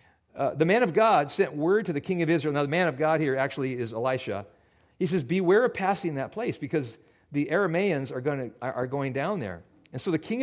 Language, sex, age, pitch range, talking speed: English, male, 50-69, 135-185 Hz, 225 wpm